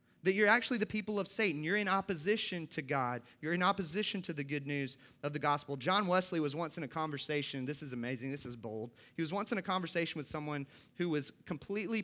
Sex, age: male, 30-49